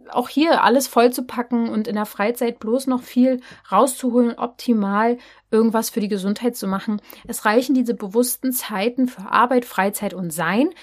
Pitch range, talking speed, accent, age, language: 195-250 Hz, 170 wpm, German, 30-49, German